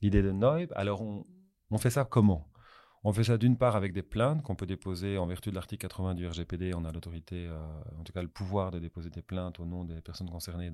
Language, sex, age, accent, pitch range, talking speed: French, male, 30-49, French, 85-110 Hz, 250 wpm